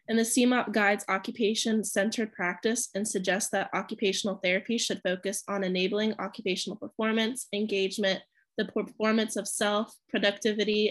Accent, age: American, 20-39